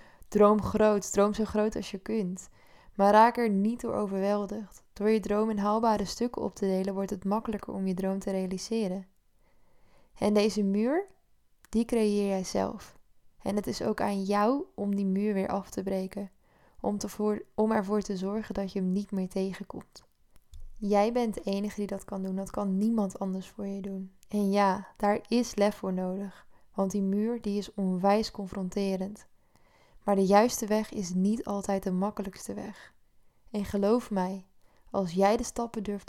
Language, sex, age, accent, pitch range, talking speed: Dutch, female, 10-29, Dutch, 195-215 Hz, 180 wpm